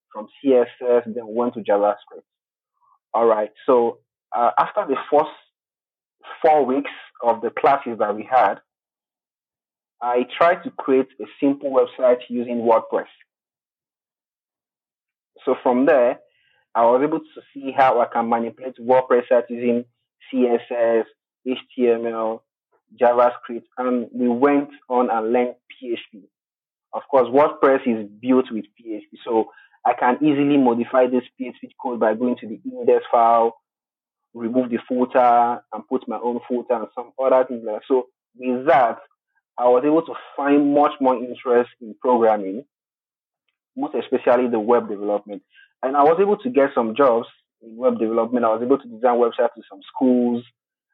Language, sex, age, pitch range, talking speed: English, male, 30-49, 120-140 Hz, 150 wpm